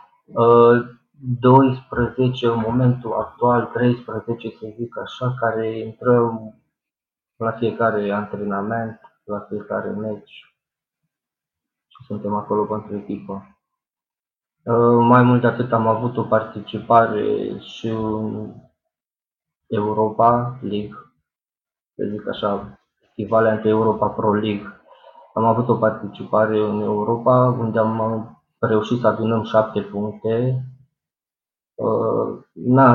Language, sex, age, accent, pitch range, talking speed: Romanian, male, 20-39, native, 110-120 Hz, 100 wpm